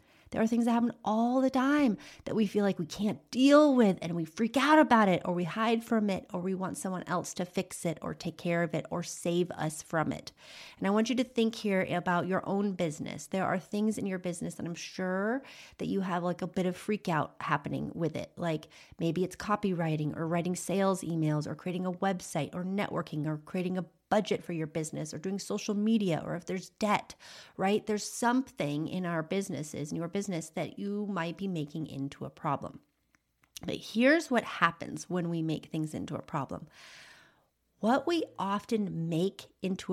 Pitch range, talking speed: 170-215 Hz, 210 wpm